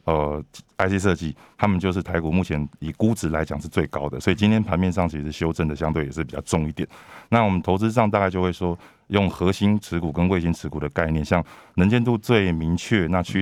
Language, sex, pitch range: Chinese, male, 80-95 Hz